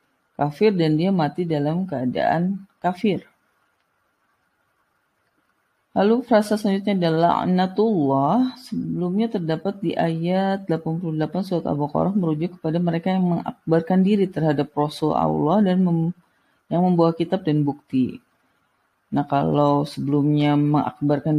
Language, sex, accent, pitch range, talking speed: Indonesian, female, native, 145-190 Hz, 110 wpm